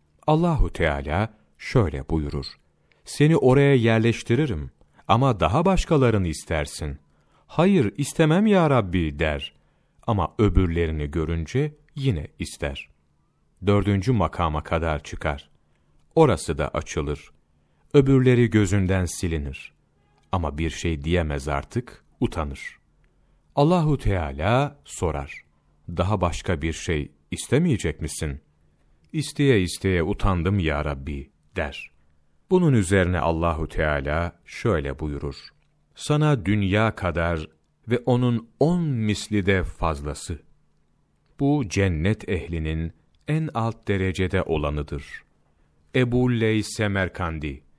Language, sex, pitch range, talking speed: Turkish, male, 75-110 Hz, 100 wpm